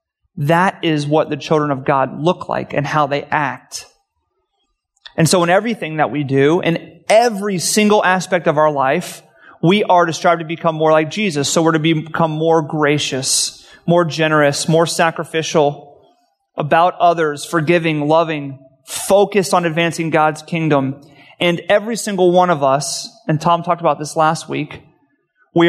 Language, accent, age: English, American, 30-49